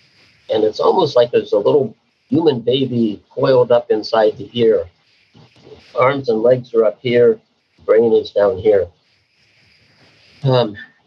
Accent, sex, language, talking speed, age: American, male, English, 135 wpm, 50-69